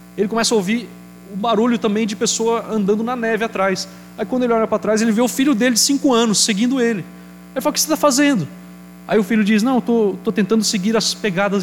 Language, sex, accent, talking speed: Portuguese, male, Brazilian, 235 wpm